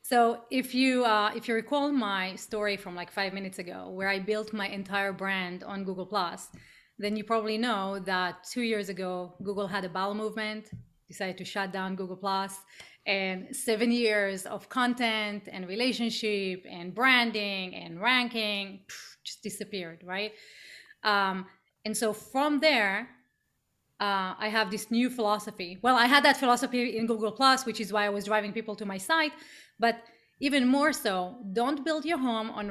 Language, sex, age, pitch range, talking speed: English, female, 30-49, 200-255 Hz, 165 wpm